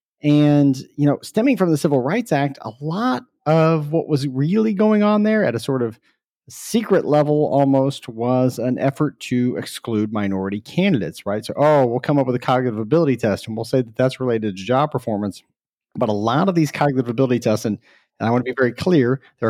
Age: 40-59